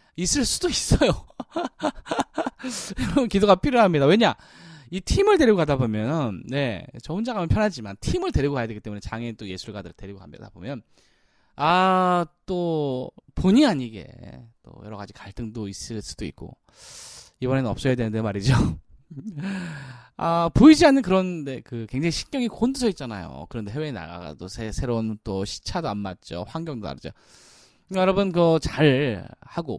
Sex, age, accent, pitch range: male, 20-39, native, 110-165 Hz